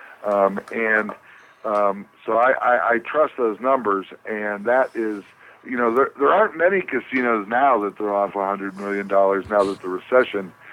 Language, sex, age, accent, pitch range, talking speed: English, male, 50-69, American, 100-115 Hz, 180 wpm